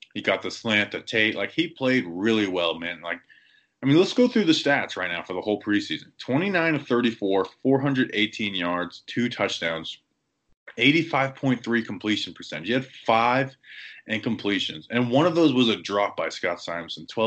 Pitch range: 95-120 Hz